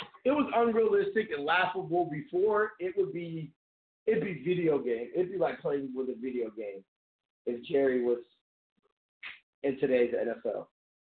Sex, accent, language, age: male, American, English, 40-59